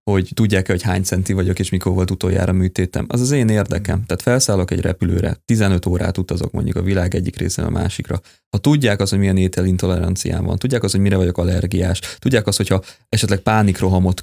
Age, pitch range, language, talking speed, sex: 20-39, 95-115 Hz, Hungarian, 200 wpm, male